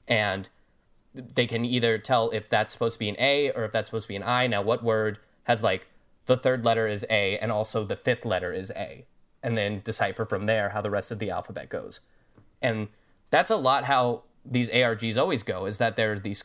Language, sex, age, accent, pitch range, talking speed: English, male, 10-29, American, 105-125 Hz, 230 wpm